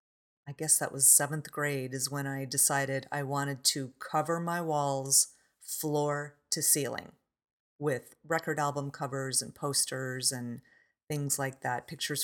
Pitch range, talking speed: 140-160 Hz, 145 wpm